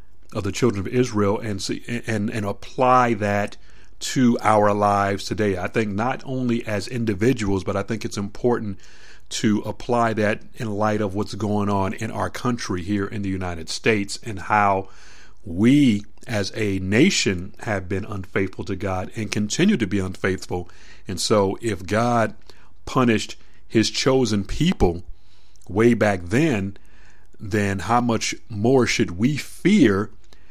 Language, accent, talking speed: English, American, 150 wpm